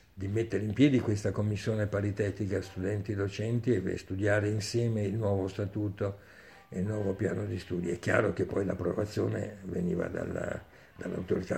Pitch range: 95-115 Hz